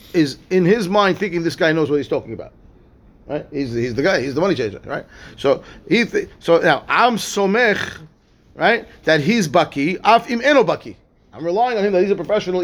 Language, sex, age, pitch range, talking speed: English, male, 30-49, 160-210 Hz, 230 wpm